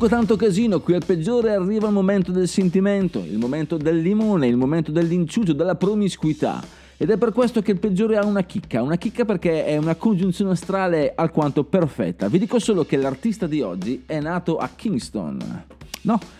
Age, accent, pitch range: 30-49, native, 130-195 Hz